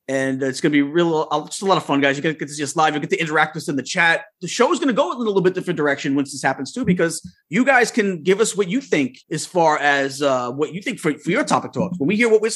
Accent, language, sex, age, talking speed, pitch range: American, English, male, 30-49, 325 wpm, 140-190 Hz